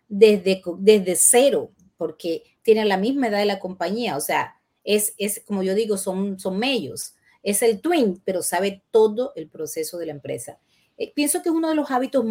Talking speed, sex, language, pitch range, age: 195 wpm, female, English, 195-255 Hz, 30-49